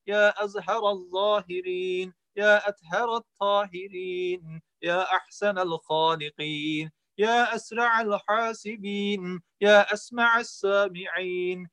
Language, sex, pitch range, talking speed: Turkish, male, 180-210 Hz, 75 wpm